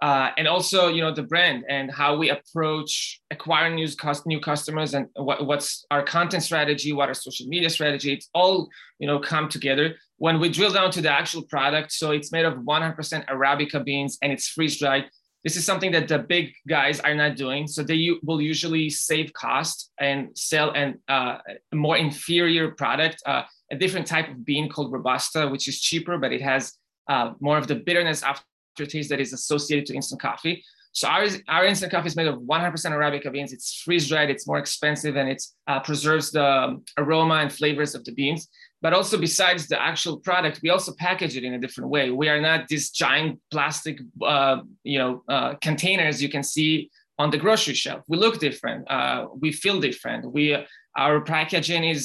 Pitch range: 145-165 Hz